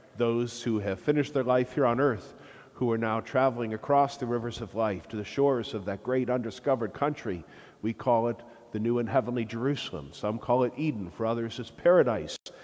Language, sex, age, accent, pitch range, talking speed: English, male, 50-69, American, 105-130 Hz, 200 wpm